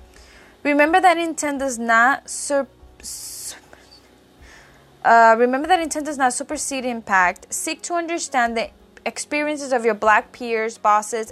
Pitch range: 200-245 Hz